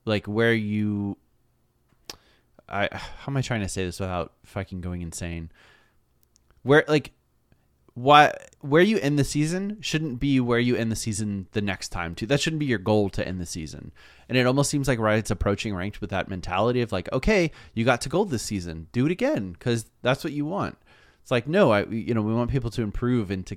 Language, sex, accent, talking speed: English, male, American, 215 wpm